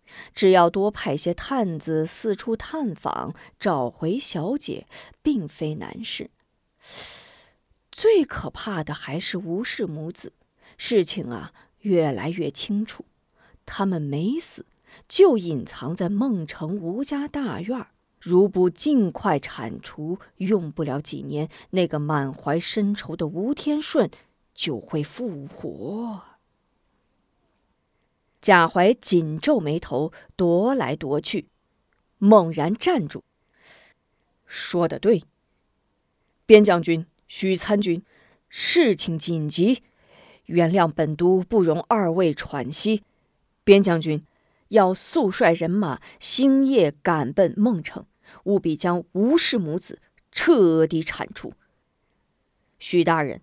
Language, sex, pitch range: Chinese, female, 160-220 Hz